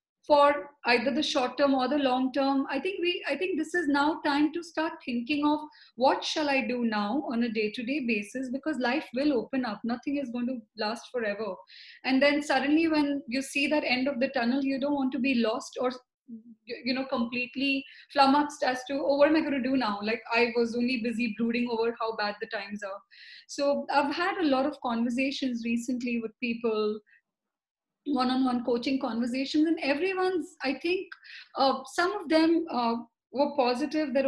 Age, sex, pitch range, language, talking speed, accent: 20-39, female, 240-295 Hz, English, 195 wpm, Indian